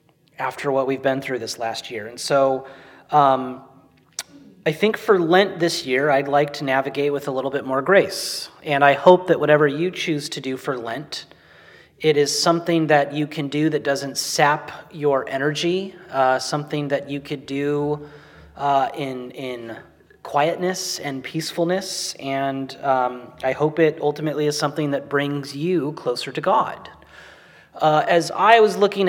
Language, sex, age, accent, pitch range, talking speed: English, male, 30-49, American, 140-170 Hz, 165 wpm